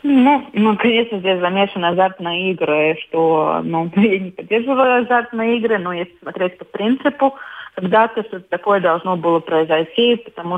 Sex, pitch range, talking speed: female, 165-205 Hz, 145 wpm